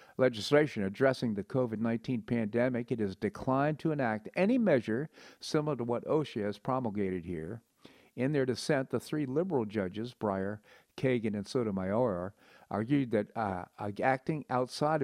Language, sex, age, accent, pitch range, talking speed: English, male, 50-69, American, 105-130 Hz, 140 wpm